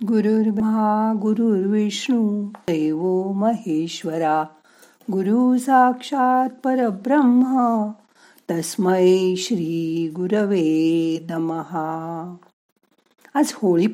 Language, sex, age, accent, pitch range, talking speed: Marathi, female, 50-69, native, 165-230 Hz, 55 wpm